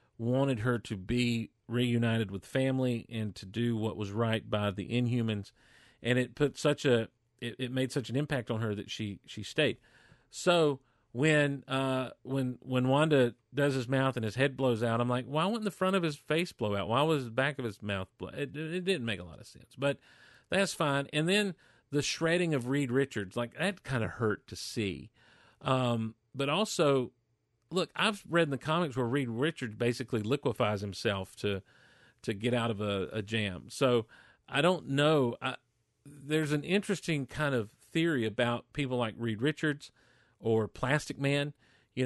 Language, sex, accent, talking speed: English, male, American, 190 wpm